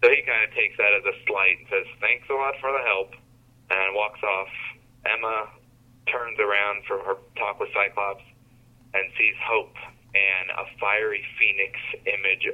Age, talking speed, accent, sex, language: 30-49, 170 wpm, American, male, English